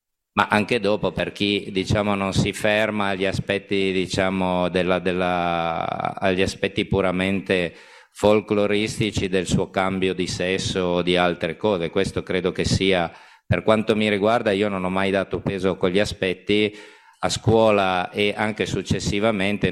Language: Italian